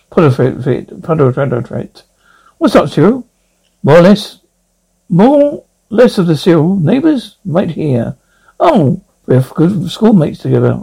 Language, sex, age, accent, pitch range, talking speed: English, male, 60-79, British, 145-200 Hz, 110 wpm